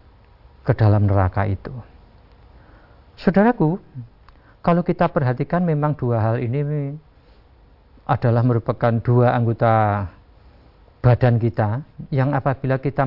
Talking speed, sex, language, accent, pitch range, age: 90 wpm, male, Indonesian, native, 115-160 Hz, 50-69